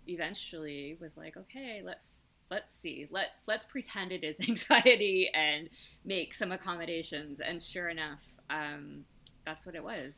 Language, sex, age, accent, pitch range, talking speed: English, female, 20-39, American, 145-180 Hz, 145 wpm